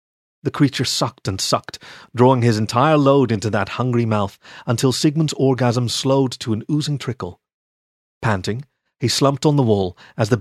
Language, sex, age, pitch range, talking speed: English, male, 30-49, 105-135 Hz, 165 wpm